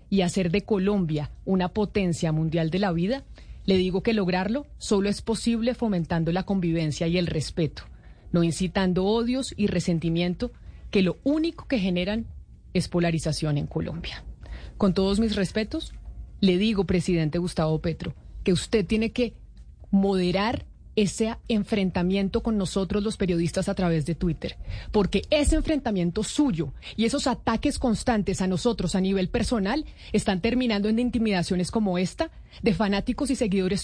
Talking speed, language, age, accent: 150 wpm, Spanish, 30-49, Colombian